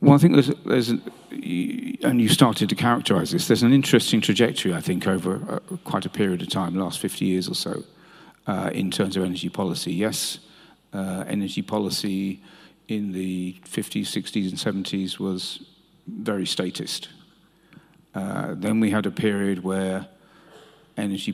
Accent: British